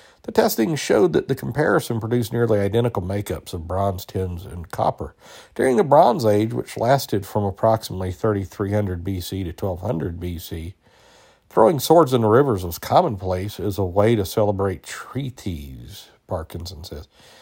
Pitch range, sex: 90-115 Hz, male